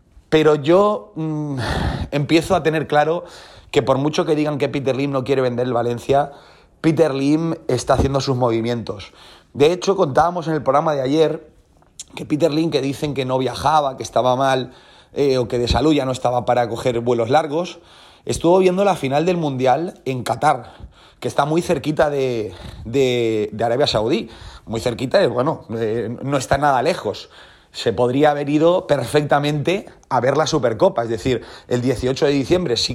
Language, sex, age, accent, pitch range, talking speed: Spanish, male, 30-49, Spanish, 125-155 Hz, 180 wpm